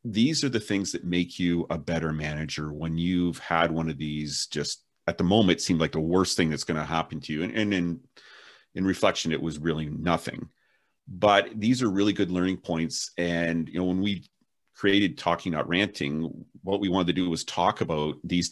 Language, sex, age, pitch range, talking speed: English, male, 40-59, 80-95 Hz, 210 wpm